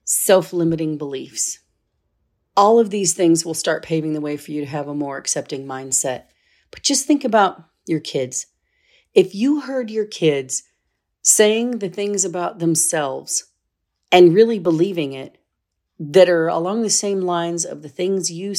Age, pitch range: 40-59, 145-200 Hz